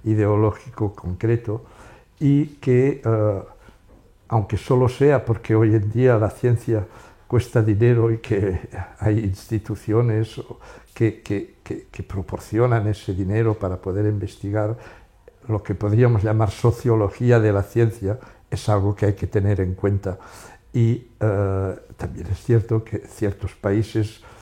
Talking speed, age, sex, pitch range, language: 135 wpm, 60-79, male, 100-115 Hz, Spanish